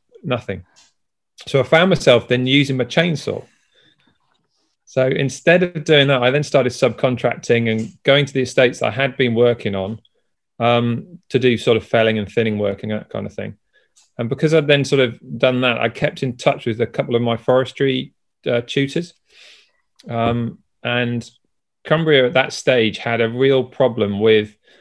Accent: British